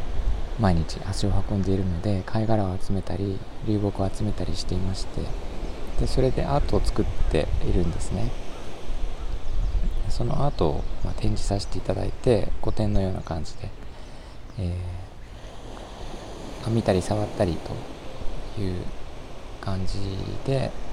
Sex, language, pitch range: male, Japanese, 85-110 Hz